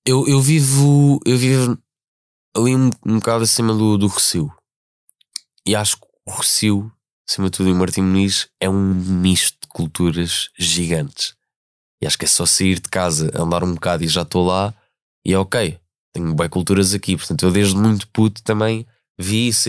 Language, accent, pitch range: Portuguese, Portuguese, 90-110 Hz